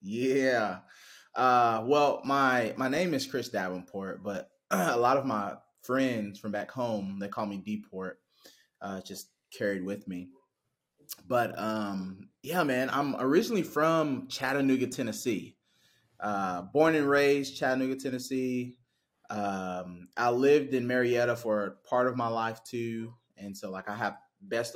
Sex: male